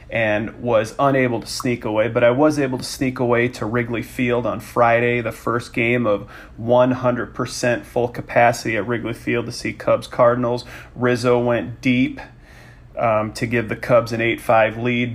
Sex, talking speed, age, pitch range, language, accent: male, 165 wpm, 40-59, 115-130 Hz, English, American